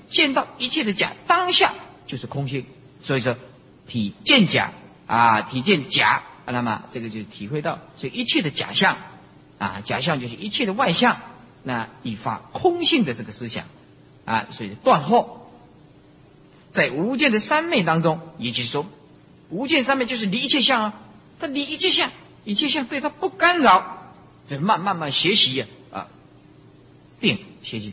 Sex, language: male, Chinese